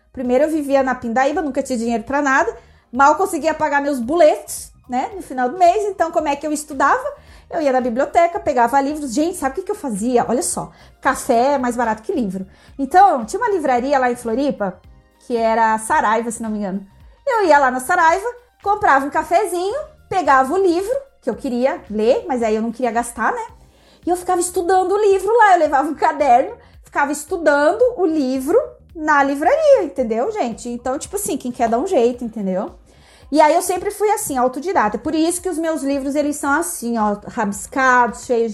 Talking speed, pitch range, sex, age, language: 200 wpm, 250-330 Hz, female, 30-49, Portuguese